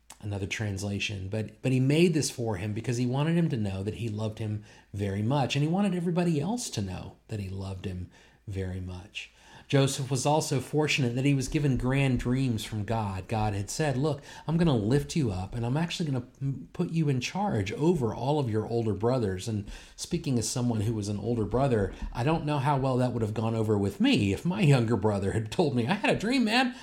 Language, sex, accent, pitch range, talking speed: English, male, American, 105-150 Hz, 235 wpm